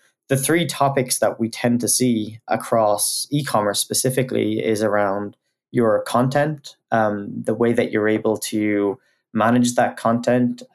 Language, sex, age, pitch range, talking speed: English, male, 20-39, 105-125 Hz, 140 wpm